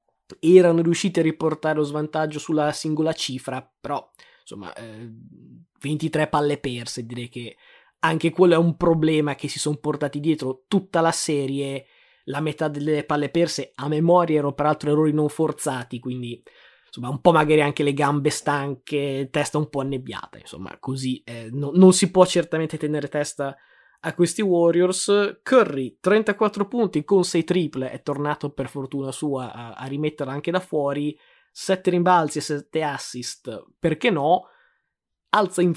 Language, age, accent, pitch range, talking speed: Italian, 20-39, native, 140-170 Hz, 155 wpm